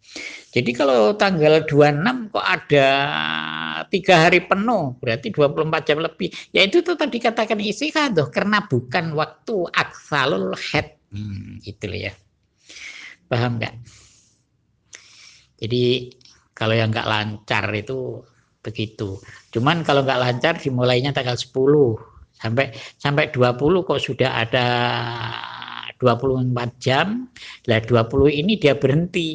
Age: 50-69